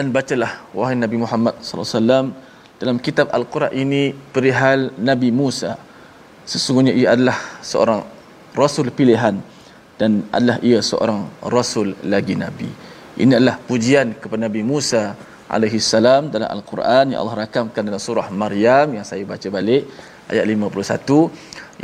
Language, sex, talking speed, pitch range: Malayalam, male, 130 wpm, 110-130 Hz